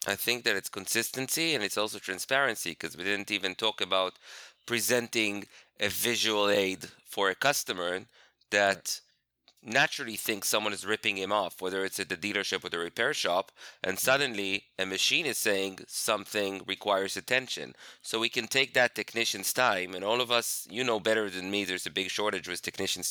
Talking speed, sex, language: 180 wpm, male, English